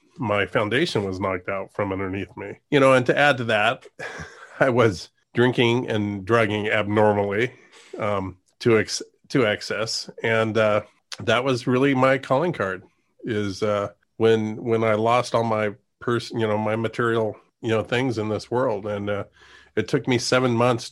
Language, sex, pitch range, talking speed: English, male, 110-130 Hz, 170 wpm